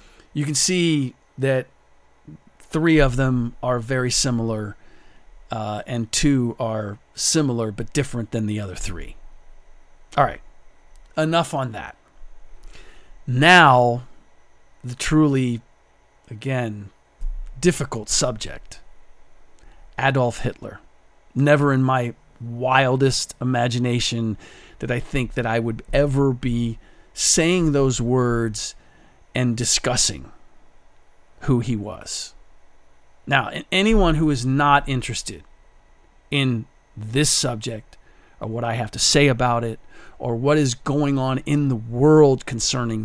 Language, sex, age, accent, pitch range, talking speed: English, male, 40-59, American, 115-140 Hz, 115 wpm